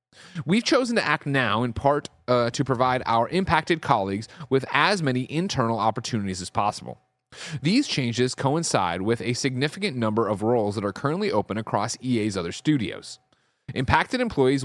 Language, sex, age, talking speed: English, male, 30-49, 160 wpm